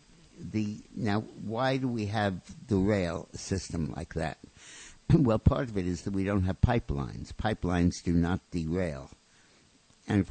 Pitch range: 85-105 Hz